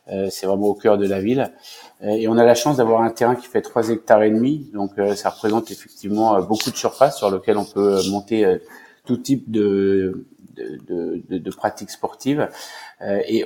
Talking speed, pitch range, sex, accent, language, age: 185 wpm, 105-120 Hz, male, French, French, 30-49